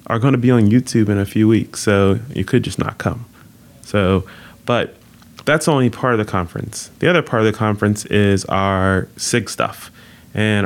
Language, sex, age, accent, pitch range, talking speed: English, male, 20-39, American, 95-115 Hz, 195 wpm